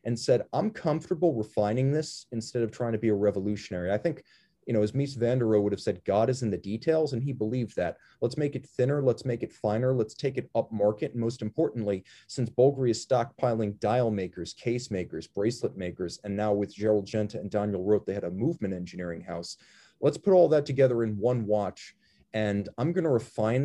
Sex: male